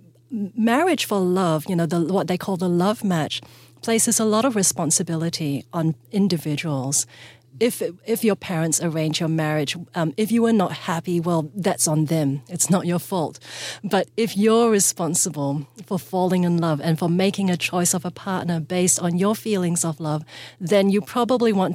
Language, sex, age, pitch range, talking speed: English, female, 40-59, 160-195 Hz, 180 wpm